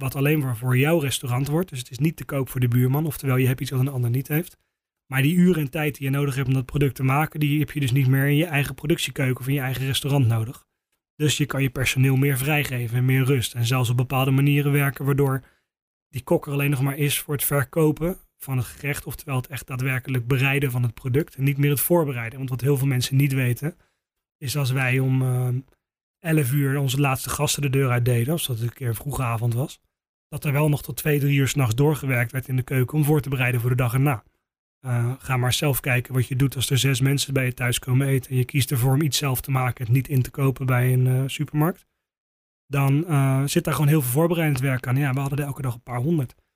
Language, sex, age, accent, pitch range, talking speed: Dutch, male, 30-49, Dutch, 130-145 Hz, 260 wpm